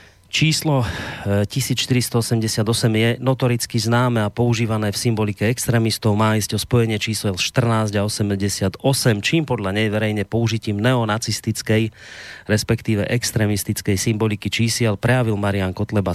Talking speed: 115 wpm